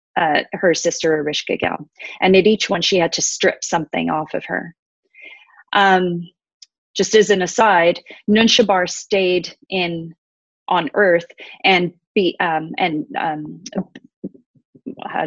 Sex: female